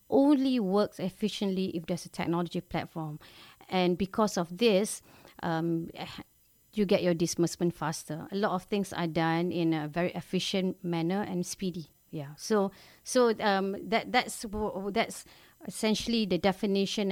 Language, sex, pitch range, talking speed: English, female, 175-215 Hz, 145 wpm